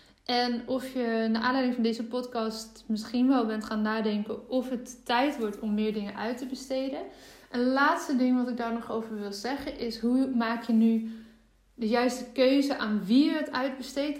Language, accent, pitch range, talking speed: Dutch, Dutch, 225-255 Hz, 195 wpm